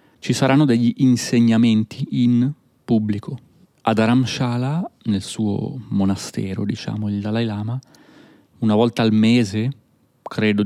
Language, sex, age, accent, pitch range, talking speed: Italian, male, 30-49, native, 105-120 Hz, 115 wpm